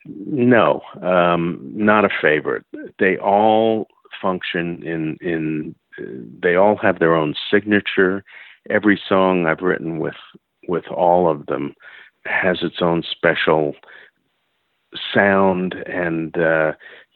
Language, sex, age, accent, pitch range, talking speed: English, male, 50-69, American, 80-95 Hz, 115 wpm